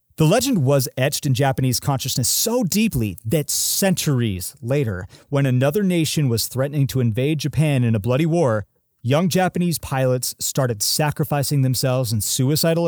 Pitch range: 115-150 Hz